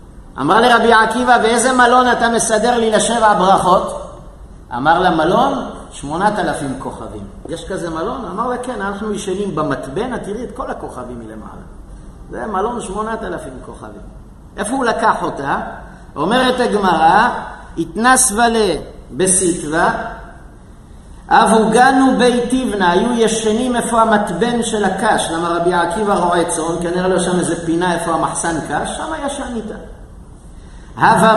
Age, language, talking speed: 50-69, Hebrew, 135 wpm